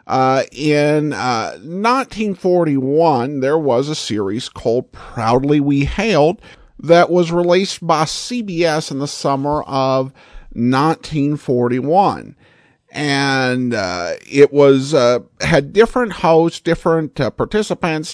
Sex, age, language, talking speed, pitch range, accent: male, 50-69, English, 110 wpm, 135-180 Hz, American